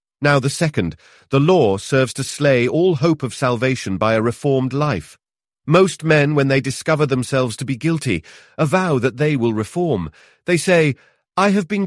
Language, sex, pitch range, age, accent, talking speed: English, male, 110-150 Hz, 40-59, British, 175 wpm